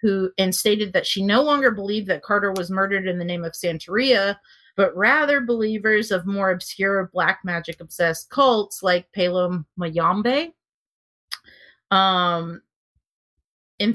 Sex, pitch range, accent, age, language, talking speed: female, 170-205 Hz, American, 30-49, English, 120 wpm